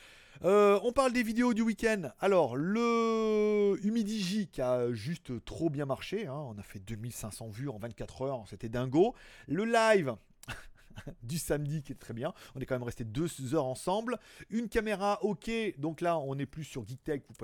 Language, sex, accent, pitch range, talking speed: French, male, French, 135-210 Hz, 190 wpm